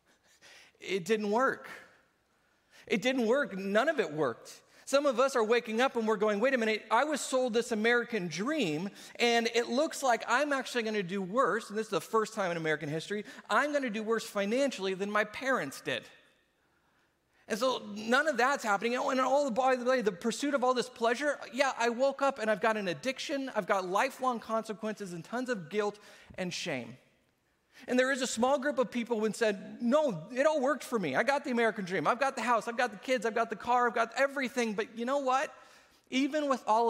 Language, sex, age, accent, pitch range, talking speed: English, male, 40-59, American, 200-255 Hz, 225 wpm